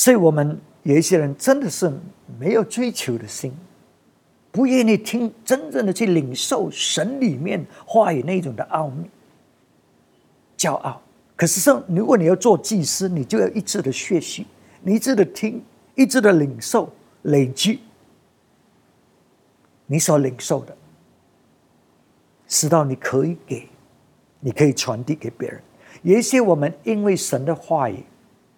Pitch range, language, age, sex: 135-195 Hz, English, 50-69, male